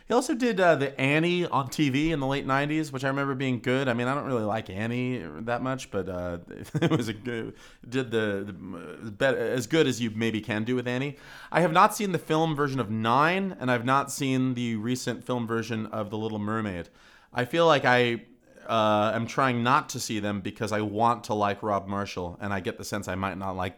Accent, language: American, English